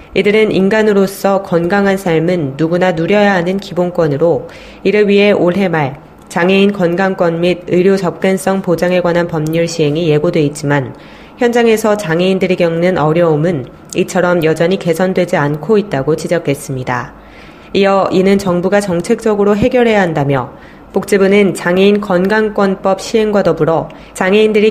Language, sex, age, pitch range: Korean, female, 20-39, 165-195 Hz